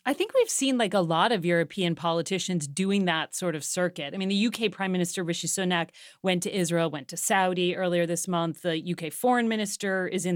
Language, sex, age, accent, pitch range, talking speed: English, female, 30-49, American, 170-225 Hz, 220 wpm